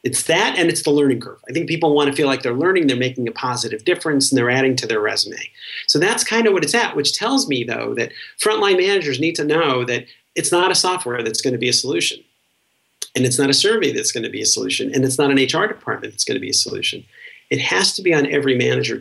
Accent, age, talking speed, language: American, 40-59, 270 wpm, English